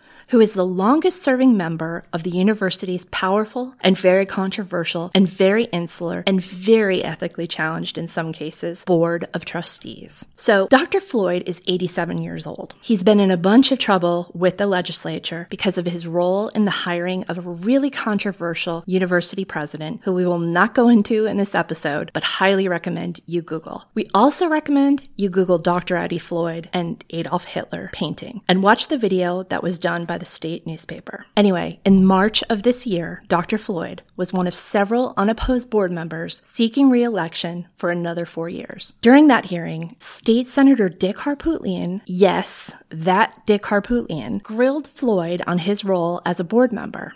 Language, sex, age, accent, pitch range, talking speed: English, female, 20-39, American, 175-220 Hz, 170 wpm